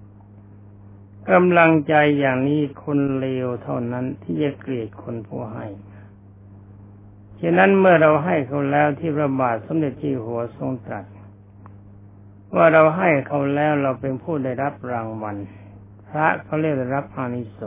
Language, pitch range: Thai, 100-145 Hz